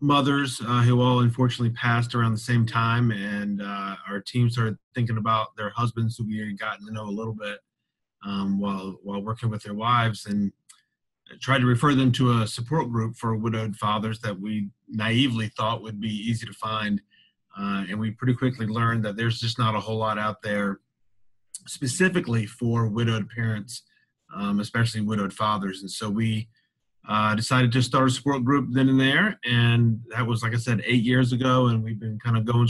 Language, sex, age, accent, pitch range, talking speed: English, male, 30-49, American, 105-120 Hz, 195 wpm